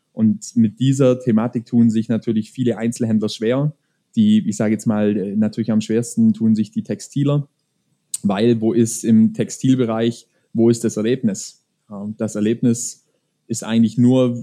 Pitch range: 110-135 Hz